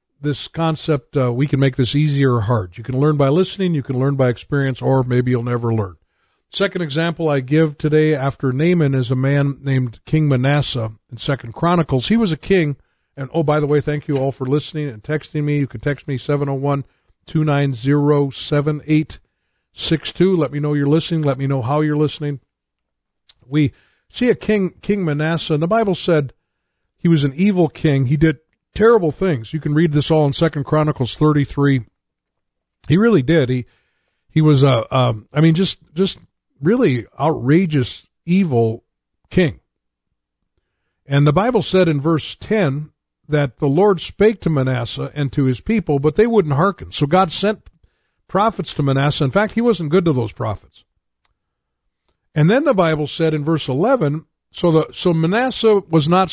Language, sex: English, male